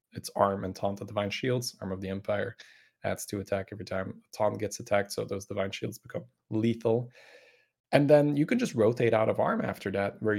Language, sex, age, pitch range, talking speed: English, male, 20-39, 100-110 Hz, 220 wpm